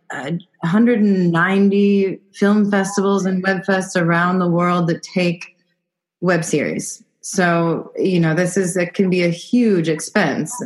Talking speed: 135 wpm